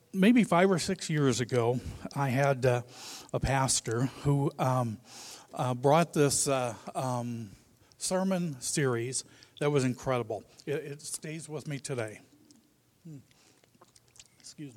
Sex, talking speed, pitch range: male, 125 wpm, 130-170 Hz